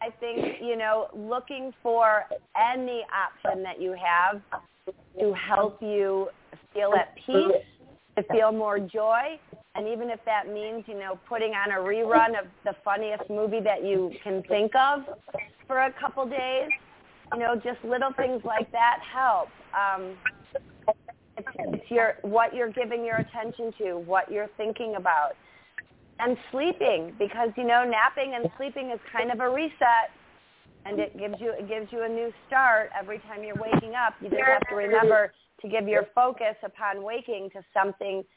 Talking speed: 170 wpm